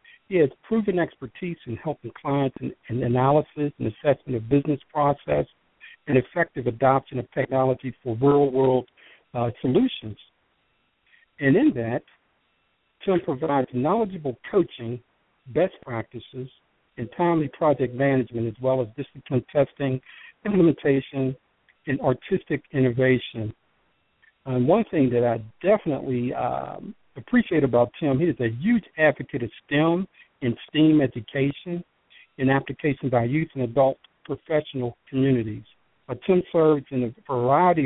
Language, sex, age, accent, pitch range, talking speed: English, male, 60-79, American, 125-155 Hz, 125 wpm